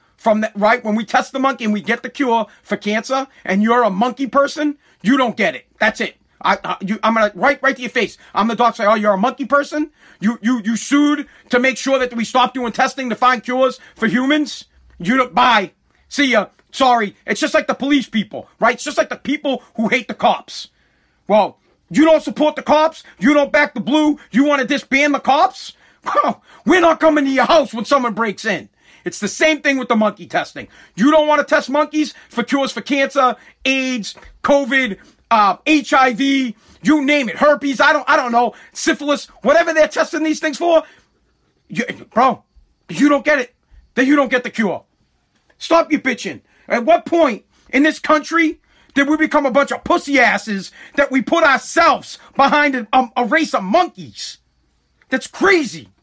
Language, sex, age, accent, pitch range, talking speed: English, male, 40-59, American, 230-295 Hz, 200 wpm